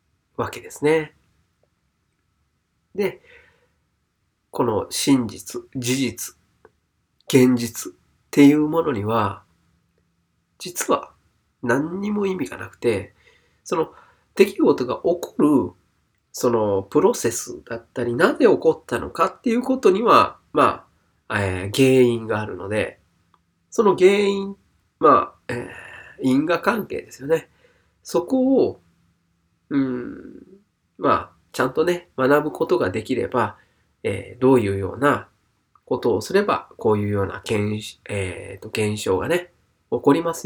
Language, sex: Japanese, male